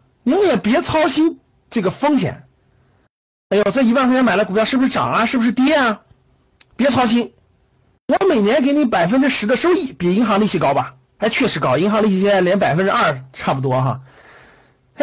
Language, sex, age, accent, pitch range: Chinese, male, 50-69, native, 185-275 Hz